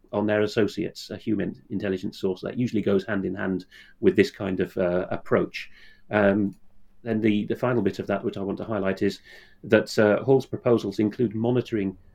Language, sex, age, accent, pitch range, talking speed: English, male, 40-59, British, 100-120 Hz, 195 wpm